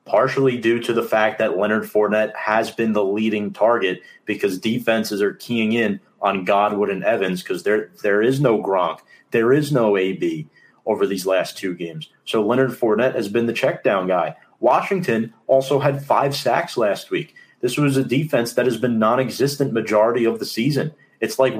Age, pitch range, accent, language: 30-49, 110-140 Hz, American, English